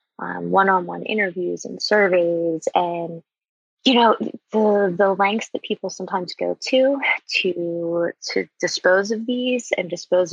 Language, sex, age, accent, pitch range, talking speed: English, female, 20-39, American, 170-205 Hz, 135 wpm